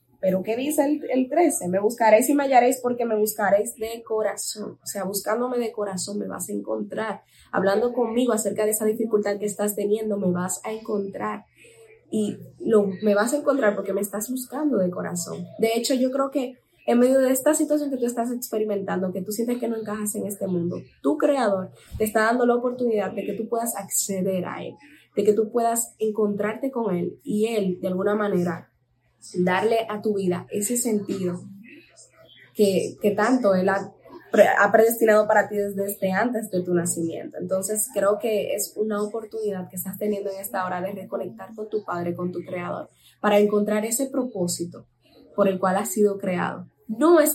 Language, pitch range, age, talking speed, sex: Spanish, 190-225 Hz, 10-29, 195 wpm, female